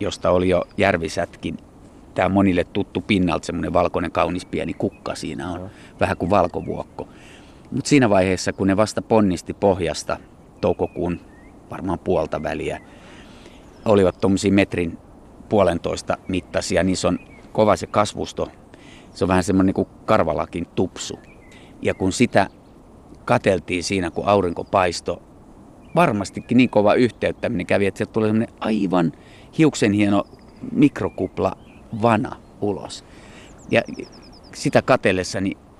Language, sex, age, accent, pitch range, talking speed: Finnish, male, 30-49, native, 90-105 Hz, 125 wpm